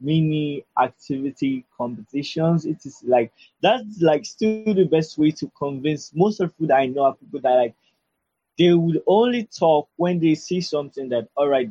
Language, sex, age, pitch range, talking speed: English, male, 20-39, 140-180 Hz, 180 wpm